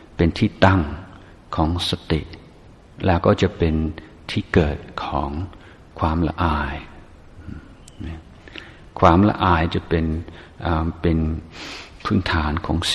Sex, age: male, 60-79